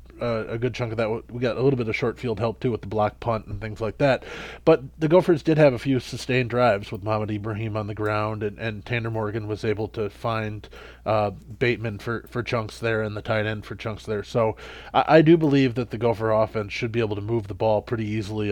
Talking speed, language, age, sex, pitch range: 250 wpm, English, 20-39, male, 105-120 Hz